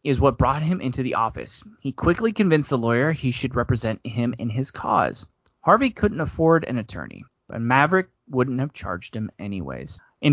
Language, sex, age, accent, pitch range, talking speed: English, male, 30-49, American, 120-160 Hz, 185 wpm